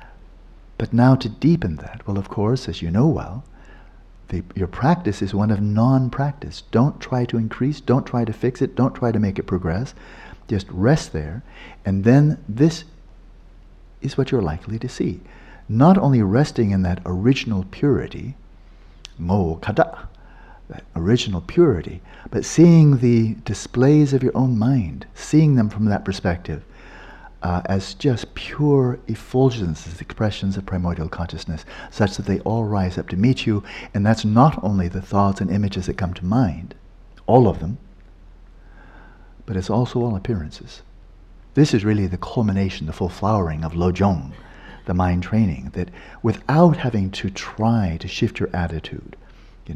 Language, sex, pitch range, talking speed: English, male, 90-120 Hz, 160 wpm